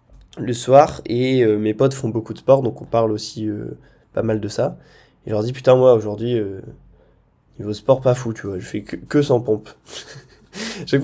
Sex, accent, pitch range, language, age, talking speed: male, French, 110-130 Hz, French, 20-39, 215 wpm